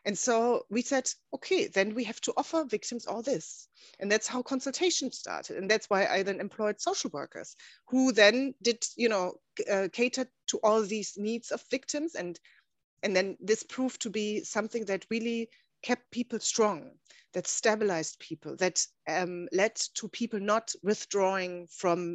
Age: 30-49